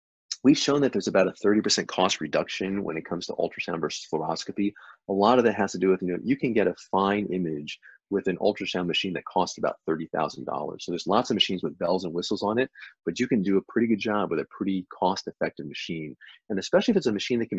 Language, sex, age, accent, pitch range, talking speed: English, male, 30-49, American, 90-115 Hz, 245 wpm